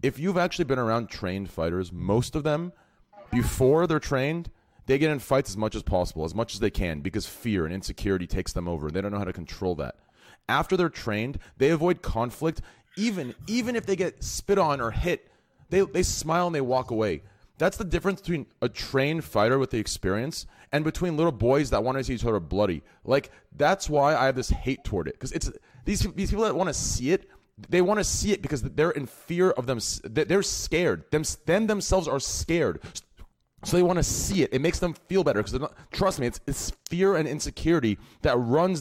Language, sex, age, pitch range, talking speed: English, male, 30-49, 105-170 Hz, 220 wpm